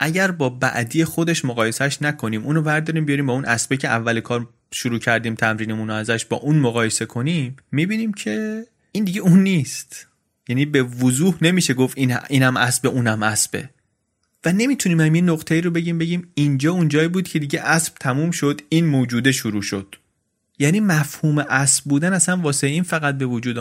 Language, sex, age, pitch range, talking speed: Persian, male, 30-49, 125-165 Hz, 175 wpm